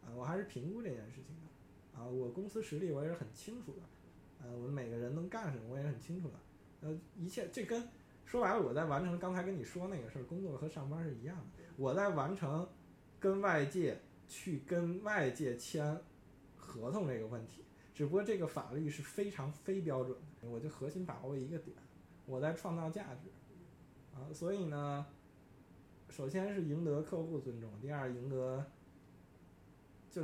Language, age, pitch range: Chinese, 20-39, 130-165 Hz